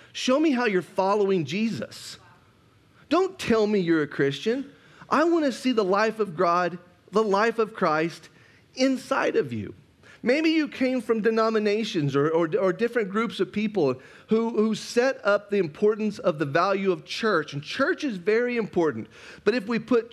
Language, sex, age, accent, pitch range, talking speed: English, male, 40-59, American, 190-240 Hz, 175 wpm